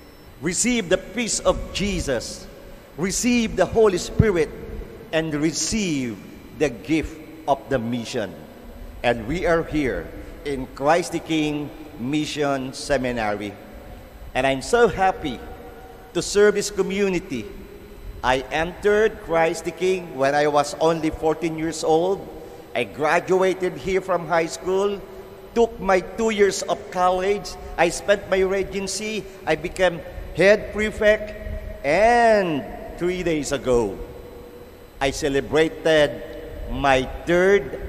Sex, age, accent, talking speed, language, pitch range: male, 50-69, Filipino, 115 wpm, English, 135-195 Hz